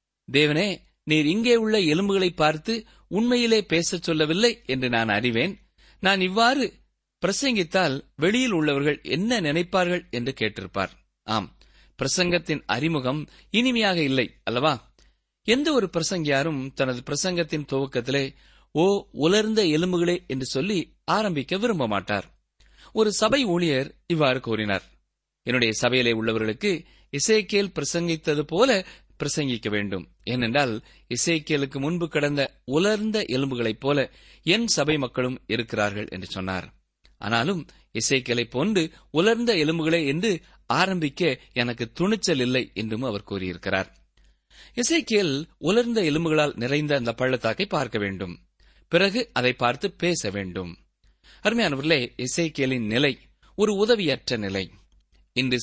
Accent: native